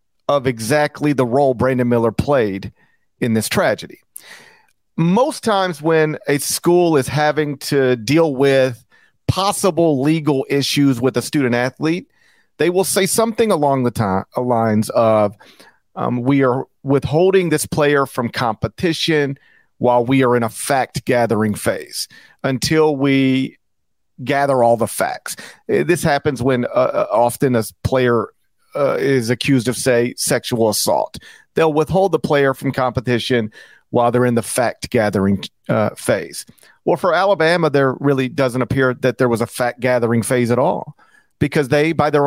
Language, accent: English, American